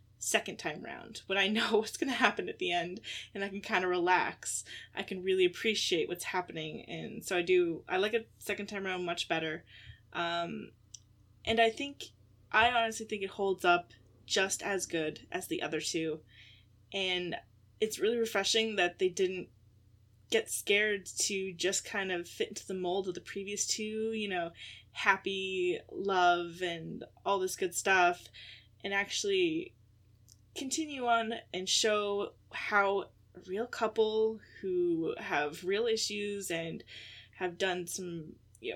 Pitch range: 170-220 Hz